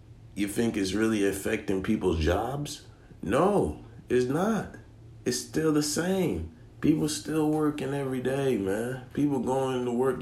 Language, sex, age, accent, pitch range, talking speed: English, male, 40-59, American, 110-130 Hz, 140 wpm